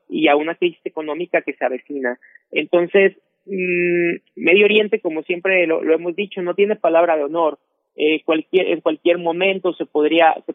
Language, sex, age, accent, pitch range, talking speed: Spanish, male, 40-59, Mexican, 155-185 Hz, 160 wpm